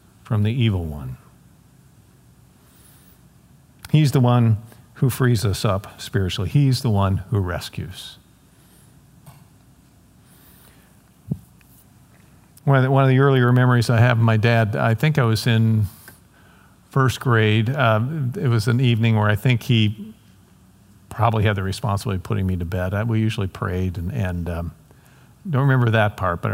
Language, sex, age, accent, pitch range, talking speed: English, male, 50-69, American, 105-125 Hz, 145 wpm